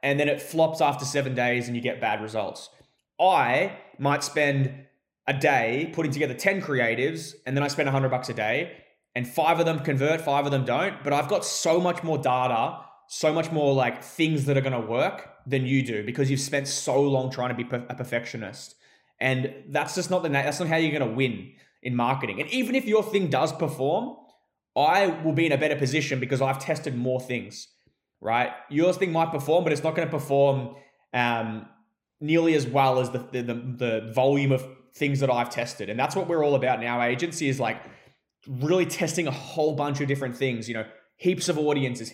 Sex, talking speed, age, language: male, 215 wpm, 20-39, English